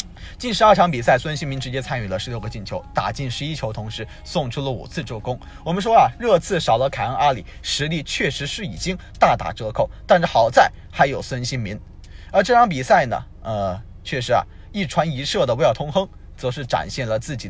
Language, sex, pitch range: Chinese, male, 115-175 Hz